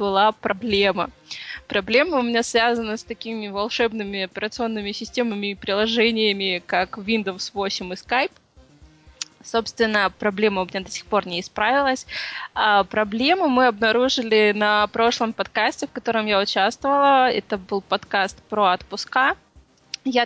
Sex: female